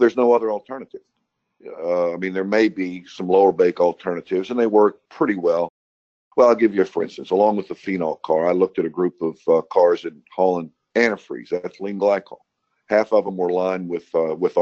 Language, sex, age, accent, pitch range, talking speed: English, male, 50-69, American, 85-110 Hz, 205 wpm